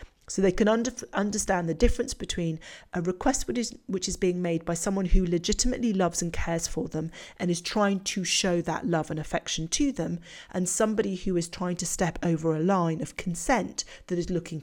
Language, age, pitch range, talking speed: English, 40-59, 170-205 Hz, 210 wpm